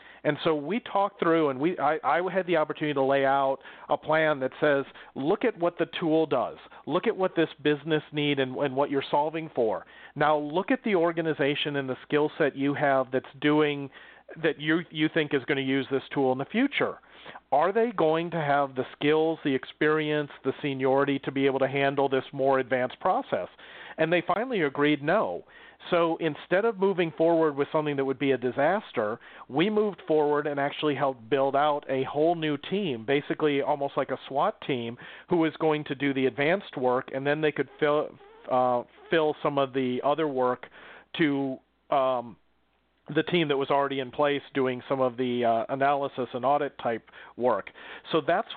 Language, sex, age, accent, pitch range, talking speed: English, male, 40-59, American, 135-160 Hz, 195 wpm